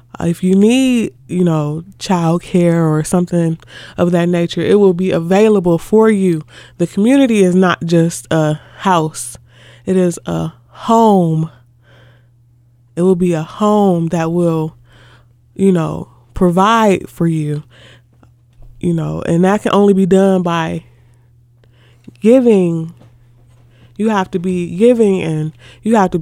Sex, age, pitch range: female, 20-39, 120-195 Hz